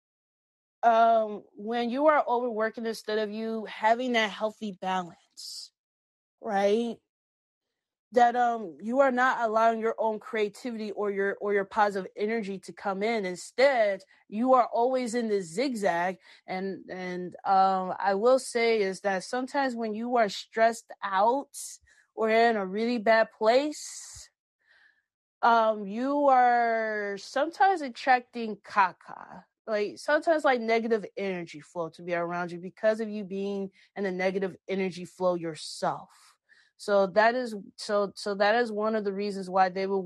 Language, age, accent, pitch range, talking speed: English, 20-39, American, 190-230 Hz, 145 wpm